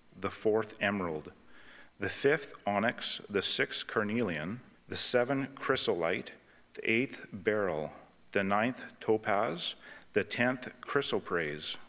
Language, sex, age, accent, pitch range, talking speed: English, male, 40-59, American, 95-120 Hz, 105 wpm